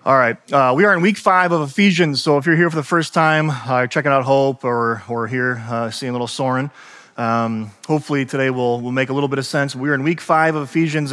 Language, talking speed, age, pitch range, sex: English, 250 wpm, 30-49, 130-160 Hz, male